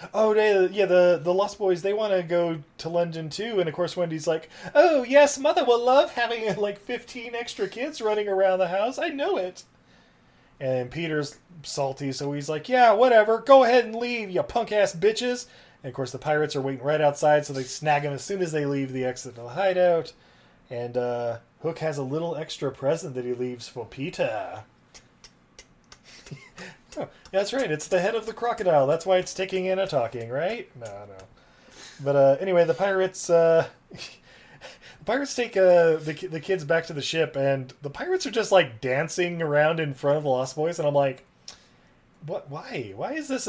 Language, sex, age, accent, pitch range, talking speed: English, male, 20-39, American, 145-200 Hz, 205 wpm